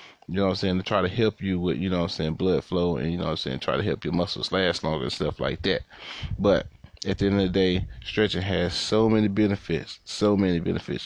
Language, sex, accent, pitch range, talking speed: English, male, American, 90-105 Hz, 270 wpm